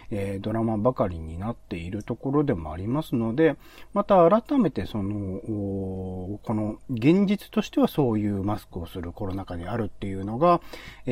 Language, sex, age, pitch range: Japanese, male, 40-59, 100-170 Hz